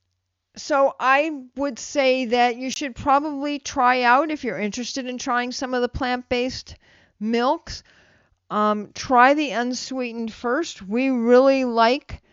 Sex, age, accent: female, 50-69, American